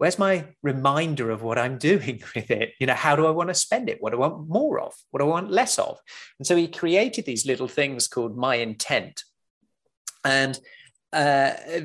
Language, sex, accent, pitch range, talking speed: English, male, British, 130-170 Hz, 215 wpm